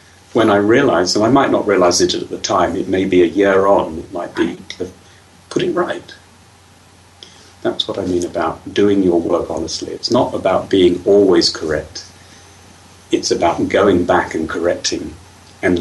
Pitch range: 90-120 Hz